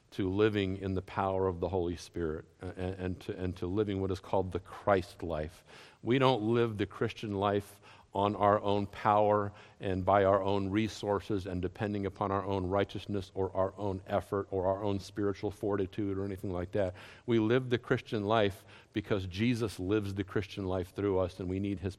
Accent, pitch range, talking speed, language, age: American, 100-135 Hz, 190 wpm, English, 50-69